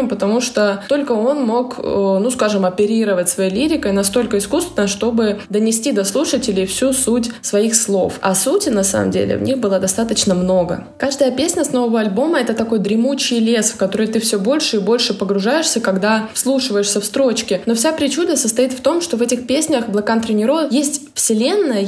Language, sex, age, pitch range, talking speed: Russian, female, 20-39, 200-255 Hz, 180 wpm